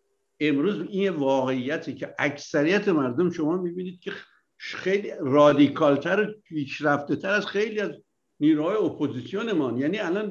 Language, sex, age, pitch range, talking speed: Persian, male, 60-79, 145-195 Hz, 120 wpm